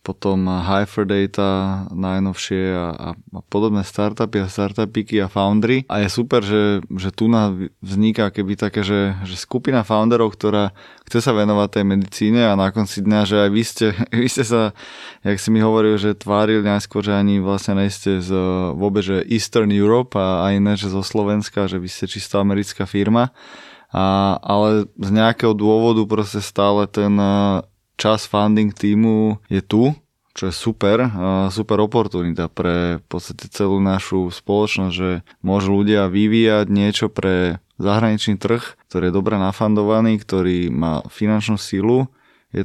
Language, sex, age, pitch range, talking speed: Slovak, male, 20-39, 95-110 Hz, 155 wpm